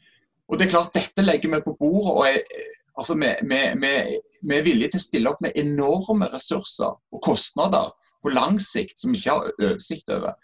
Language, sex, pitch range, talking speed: English, male, 140-225 Hz, 190 wpm